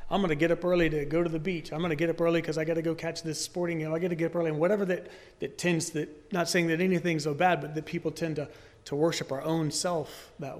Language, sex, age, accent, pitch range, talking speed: English, male, 30-49, American, 140-175 Hz, 310 wpm